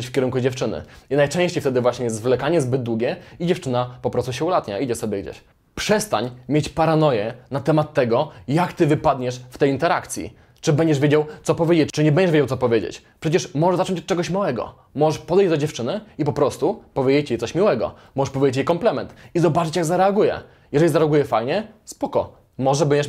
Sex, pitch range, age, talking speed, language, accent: male, 130-165 Hz, 20-39, 190 wpm, Polish, native